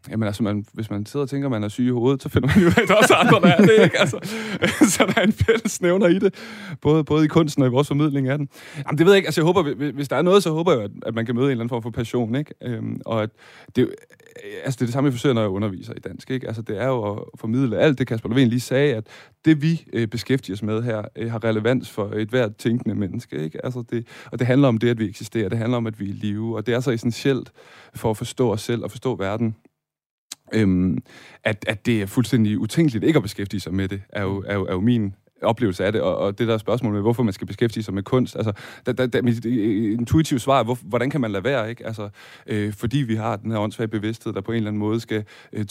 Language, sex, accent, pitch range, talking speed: Danish, male, native, 110-135 Hz, 275 wpm